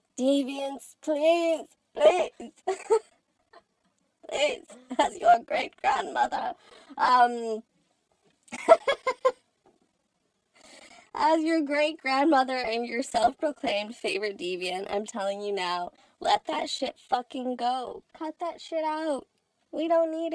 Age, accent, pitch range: 20-39, American, 225-330 Hz